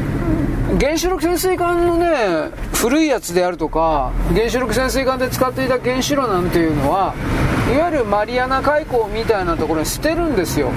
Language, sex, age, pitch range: Japanese, male, 40-59, 180-285 Hz